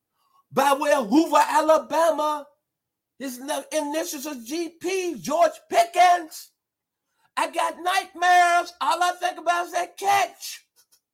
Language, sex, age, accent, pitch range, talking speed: English, male, 50-69, American, 230-300 Hz, 110 wpm